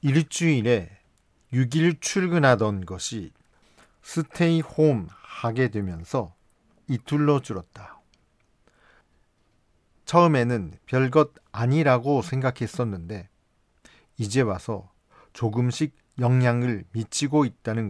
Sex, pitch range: male, 100-135 Hz